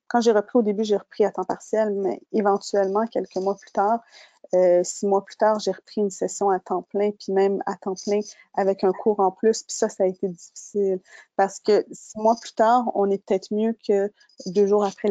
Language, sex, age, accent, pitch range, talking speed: French, female, 20-39, Canadian, 195-220 Hz, 230 wpm